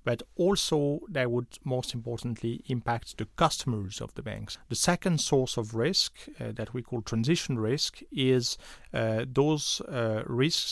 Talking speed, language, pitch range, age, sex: 155 wpm, English, 115-135 Hz, 50-69, male